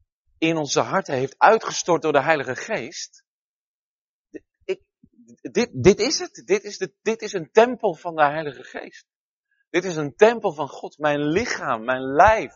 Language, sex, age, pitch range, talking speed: Dutch, male, 40-59, 120-195 Hz, 155 wpm